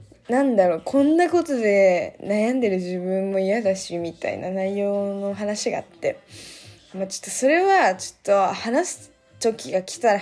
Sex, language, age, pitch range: female, Japanese, 20-39, 190-230 Hz